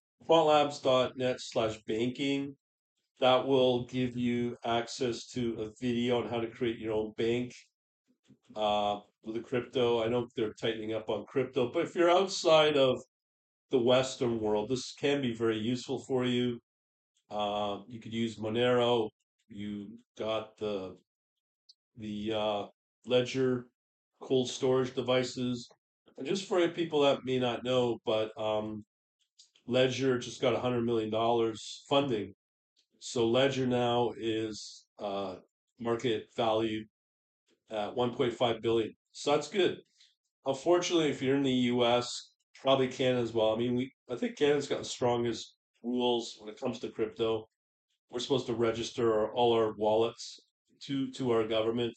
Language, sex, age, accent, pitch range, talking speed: English, male, 40-59, American, 110-130 Hz, 145 wpm